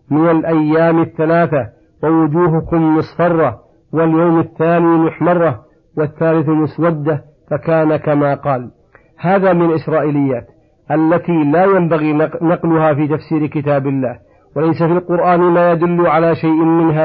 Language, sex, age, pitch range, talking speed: Arabic, male, 50-69, 150-165 Hz, 115 wpm